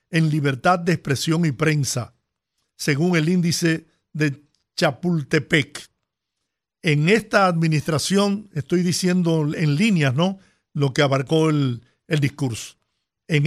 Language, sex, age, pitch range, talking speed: Spanish, male, 50-69, 150-185 Hz, 115 wpm